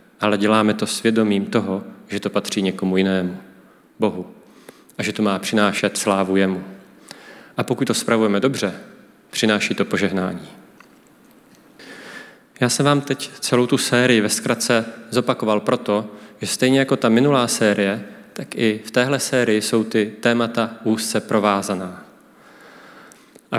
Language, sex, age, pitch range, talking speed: Czech, male, 30-49, 105-120 Hz, 135 wpm